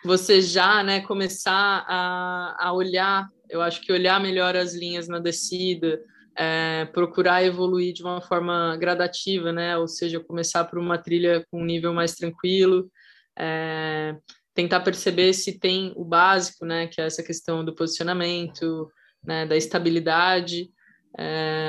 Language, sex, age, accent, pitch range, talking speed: Portuguese, female, 20-39, Brazilian, 170-190 Hz, 145 wpm